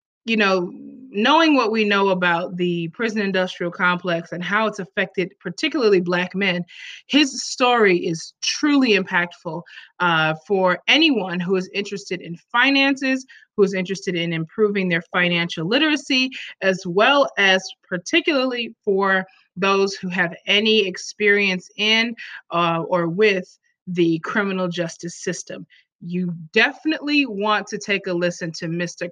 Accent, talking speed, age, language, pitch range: American, 135 wpm, 20-39, English, 180-230 Hz